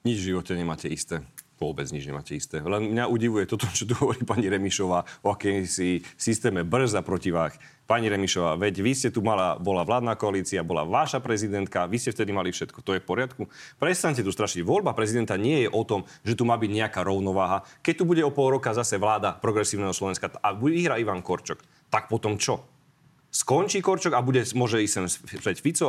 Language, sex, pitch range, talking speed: Slovak, male, 100-140 Hz, 195 wpm